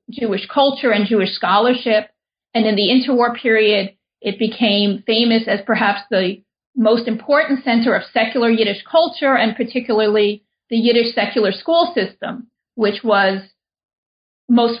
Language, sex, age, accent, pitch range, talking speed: English, female, 40-59, American, 210-245 Hz, 135 wpm